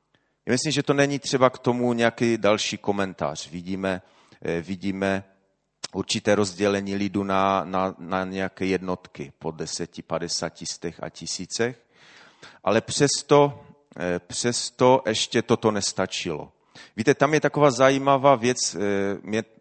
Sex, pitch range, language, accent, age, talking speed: male, 100-120 Hz, Czech, native, 30-49, 115 wpm